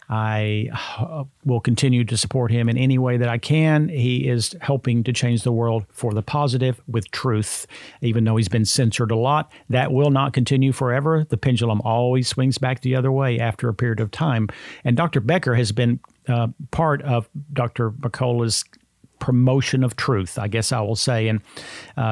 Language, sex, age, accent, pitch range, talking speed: English, male, 50-69, American, 115-140 Hz, 185 wpm